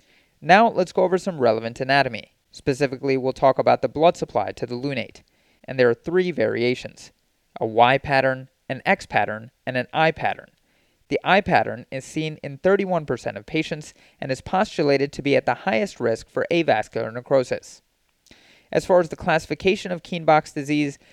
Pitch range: 130-155 Hz